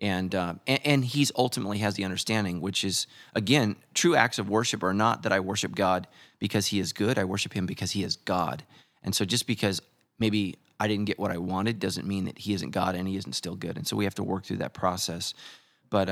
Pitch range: 95-115 Hz